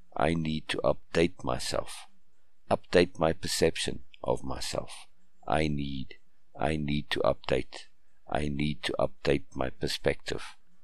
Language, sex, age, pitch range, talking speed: English, male, 50-69, 70-80 Hz, 120 wpm